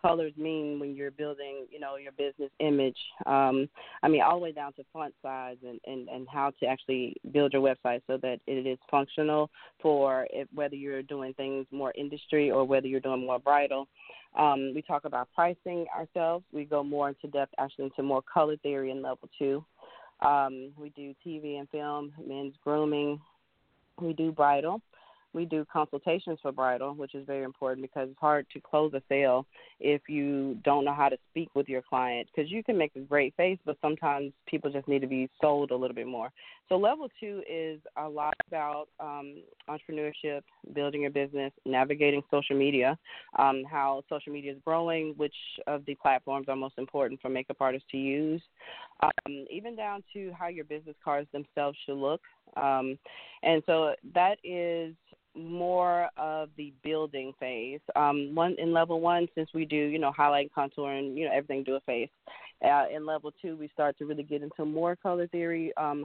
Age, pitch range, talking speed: 30-49, 135-155 Hz, 190 wpm